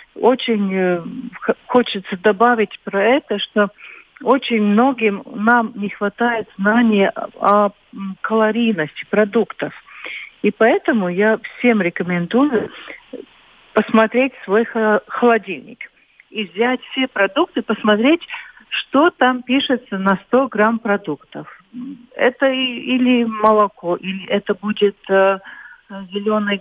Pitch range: 195-235 Hz